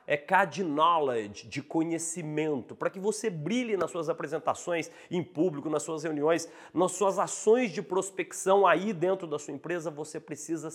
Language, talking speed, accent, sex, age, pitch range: Portuguese, 160 wpm, Brazilian, male, 40-59, 155-210 Hz